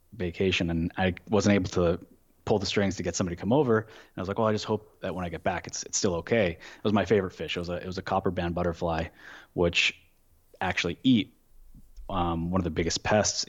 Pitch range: 85-95 Hz